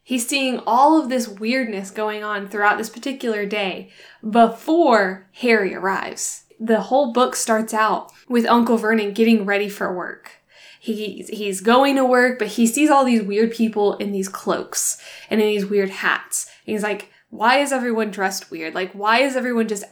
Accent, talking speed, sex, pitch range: American, 180 wpm, female, 200-230 Hz